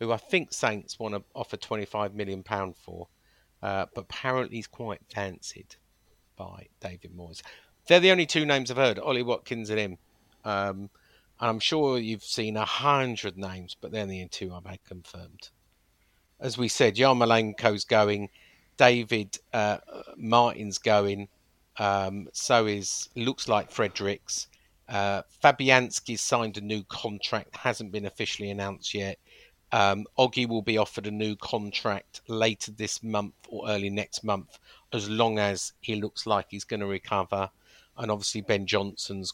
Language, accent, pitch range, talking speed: English, British, 100-120 Hz, 155 wpm